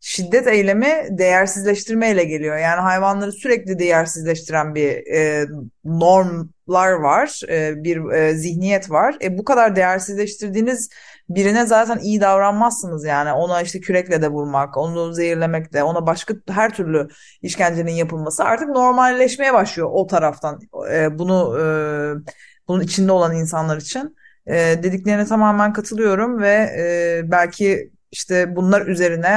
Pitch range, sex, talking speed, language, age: 160-205 Hz, female, 130 wpm, Turkish, 30-49